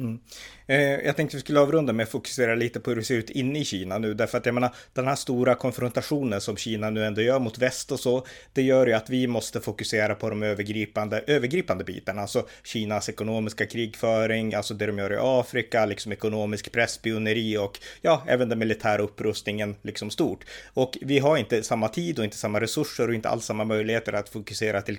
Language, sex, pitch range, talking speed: Swedish, male, 110-125 Hz, 210 wpm